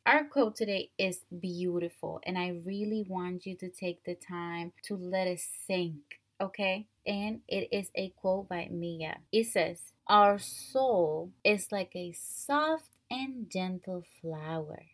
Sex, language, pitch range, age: female, English, 175-225 Hz, 20-39